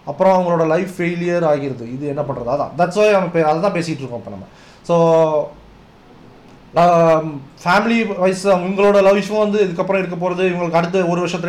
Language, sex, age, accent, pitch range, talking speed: Tamil, male, 30-49, native, 160-195 Hz, 155 wpm